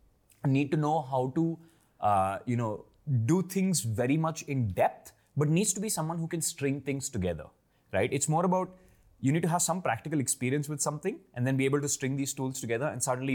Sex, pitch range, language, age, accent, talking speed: male, 115-155 Hz, Hindi, 20-39, native, 215 wpm